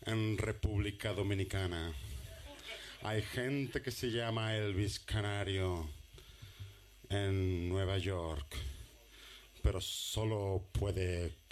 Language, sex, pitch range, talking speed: Spanish, male, 85-110 Hz, 85 wpm